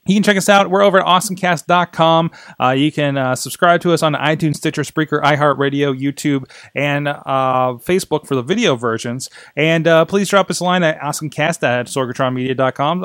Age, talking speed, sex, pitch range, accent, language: 30-49, 170 wpm, male, 130-180 Hz, American, English